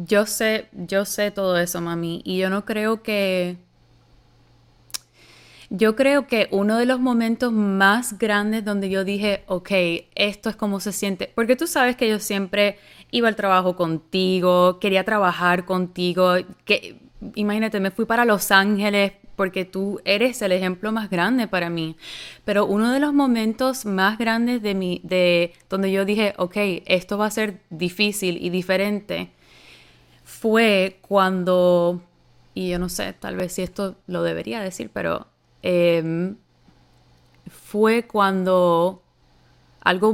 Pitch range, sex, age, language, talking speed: 180-215 Hz, female, 20-39, Spanish, 145 wpm